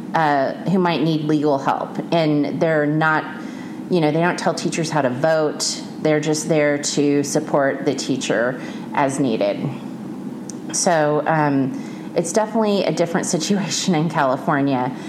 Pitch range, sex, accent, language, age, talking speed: 150-185 Hz, female, American, English, 30-49, 145 wpm